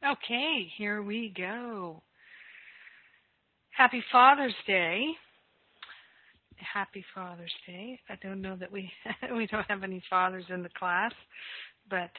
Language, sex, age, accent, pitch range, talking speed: English, female, 40-59, American, 185-210 Hz, 120 wpm